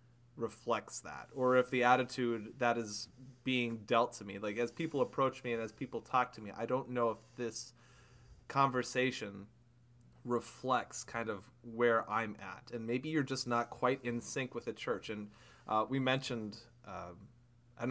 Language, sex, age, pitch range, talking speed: English, male, 20-39, 115-130 Hz, 175 wpm